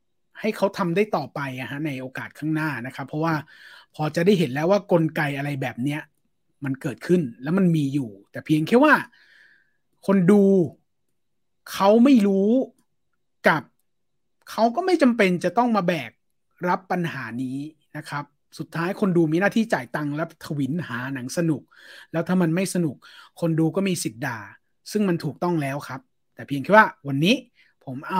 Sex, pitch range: male, 140-200 Hz